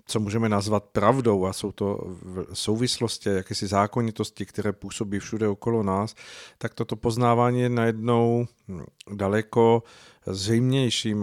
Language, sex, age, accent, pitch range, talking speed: Czech, male, 50-69, native, 100-115 Hz, 125 wpm